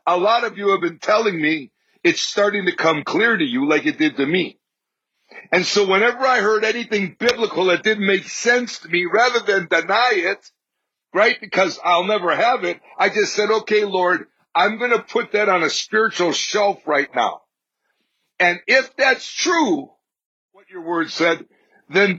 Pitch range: 165-220 Hz